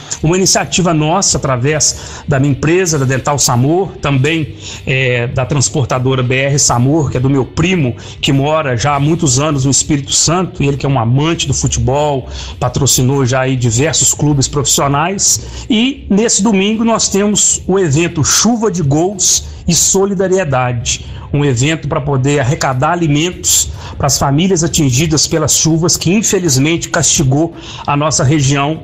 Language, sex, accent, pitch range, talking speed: Portuguese, male, Brazilian, 130-175 Hz, 150 wpm